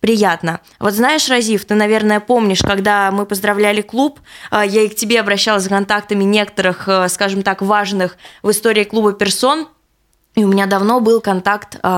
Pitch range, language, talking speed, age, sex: 185-225 Hz, Russian, 160 wpm, 20-39, female